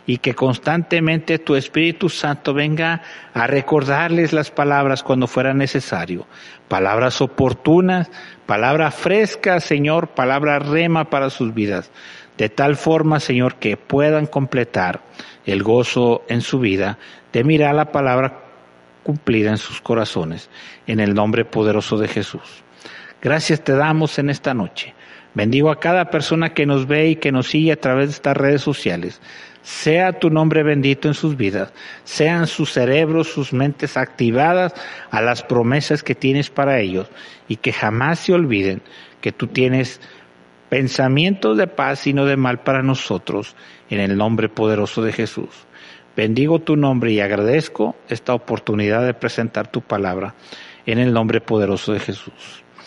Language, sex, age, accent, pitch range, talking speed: Spanish, male, 50-69, Mexican, 110-150 Hz, 150 wpm